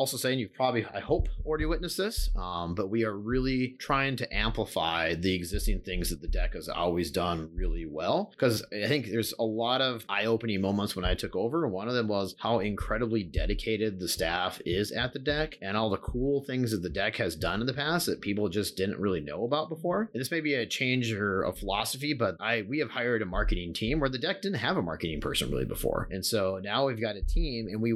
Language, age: English, 30-49